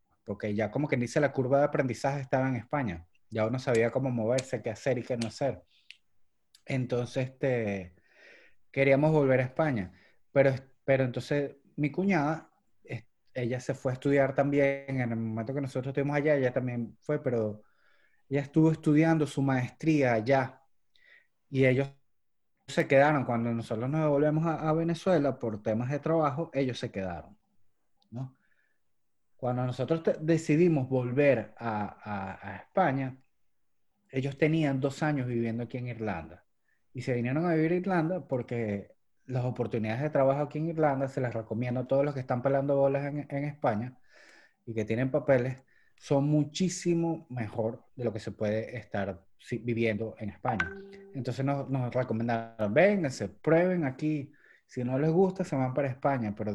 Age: 30-49